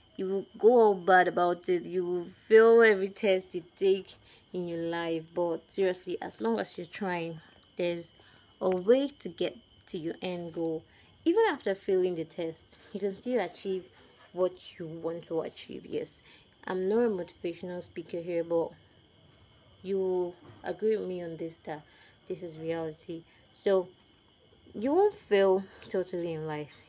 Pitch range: 170-200 Hz